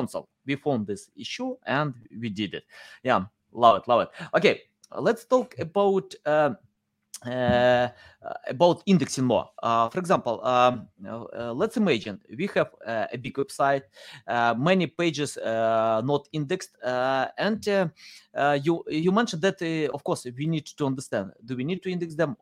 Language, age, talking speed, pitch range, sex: English, 30-49, 165 wpm, 130-180 Hz, male